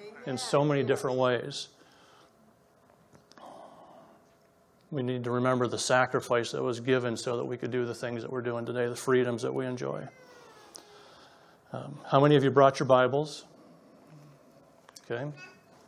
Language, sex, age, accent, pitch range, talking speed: English, male, 40-59, American, 120-140 Hz, 145 wpm